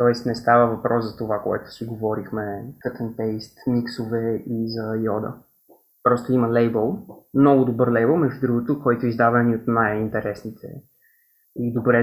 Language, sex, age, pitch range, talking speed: Bulgarian, male, 20-39, 110-135 Hz, 155 wpm